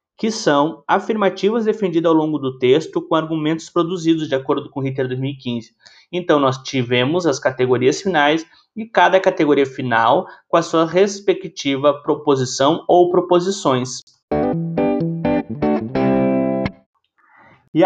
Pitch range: 140-190 Hz